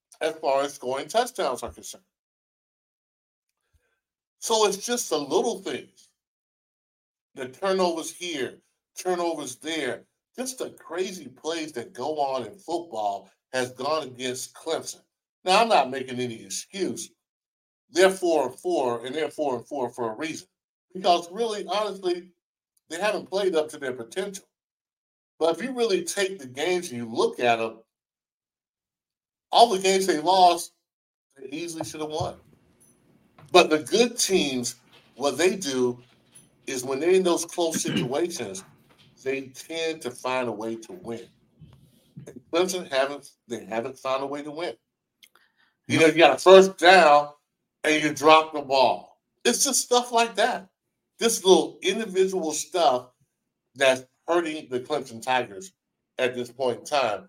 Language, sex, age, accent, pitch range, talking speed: English, male, 50-69, American, 130-185 Hz, 145 wpm